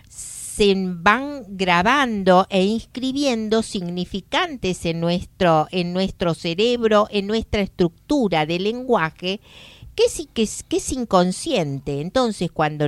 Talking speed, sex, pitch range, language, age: 115 wpm, female, 180-285 Hz, Spanish, 50-69